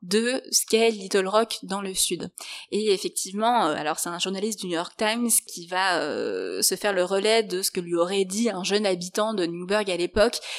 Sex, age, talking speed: female, 20-39, 215 wpm